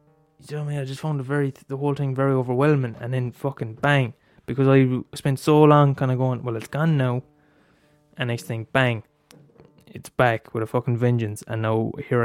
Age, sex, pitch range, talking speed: 10-29, male, 125-150 Hz, 200 wpm